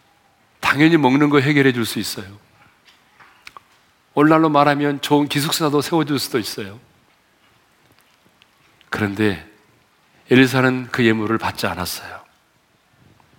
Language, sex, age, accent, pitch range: Korean, male, 40-59, native, 125-190 Hz